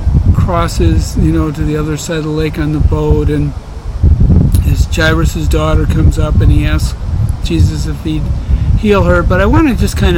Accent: American